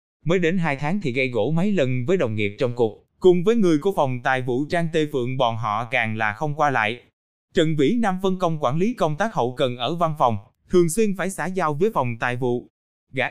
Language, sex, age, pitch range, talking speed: Vietnamese, male, 20-39, 125-180 Hz, 250 wpm